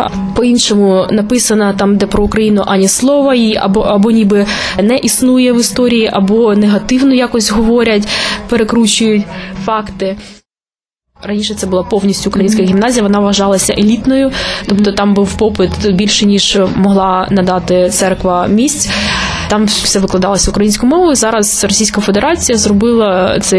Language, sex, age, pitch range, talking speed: Ukrainian, female, 20-39, 195-230 Hz, 125 wpm